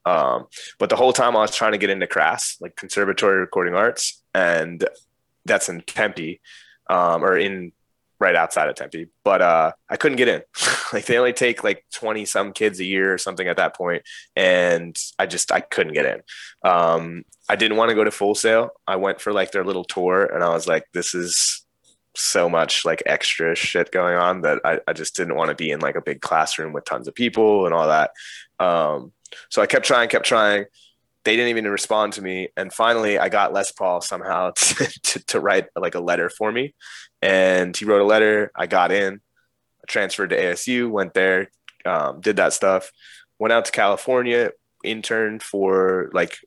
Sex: male